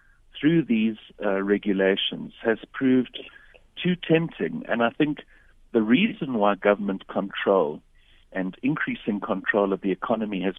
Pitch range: 100-135 Hz